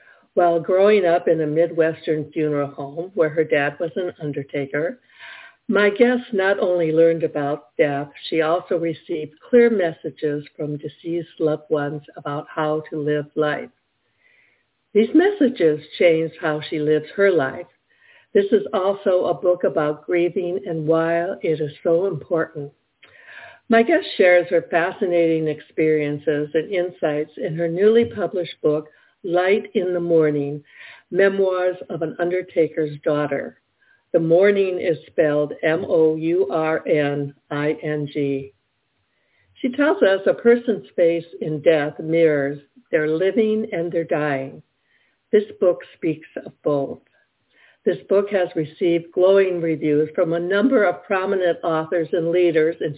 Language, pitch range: English, 150-185 Hz